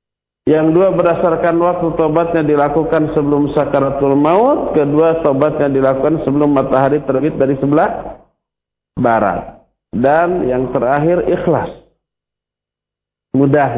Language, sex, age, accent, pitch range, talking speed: Indonesian, male, 50-69, native, 120-190 Hz, 100 wpm